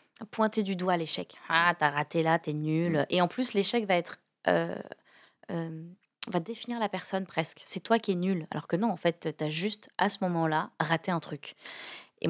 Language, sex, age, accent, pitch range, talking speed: French, female, 20-39, French, 160-185 Hz, 210 wpm